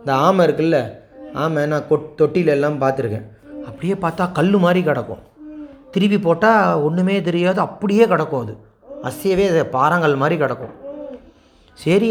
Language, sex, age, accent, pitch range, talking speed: Tamil, male, 30-49, native, 145-200 Hz, 135 wpm